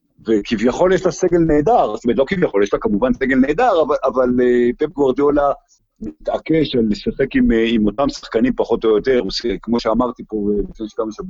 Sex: male